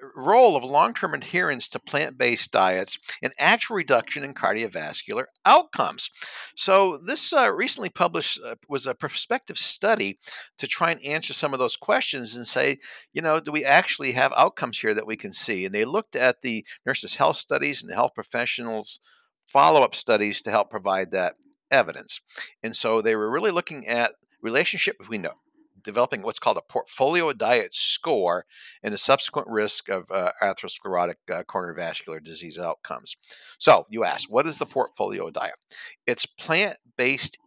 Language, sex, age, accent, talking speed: English, male, 50-69, American, 165 wpm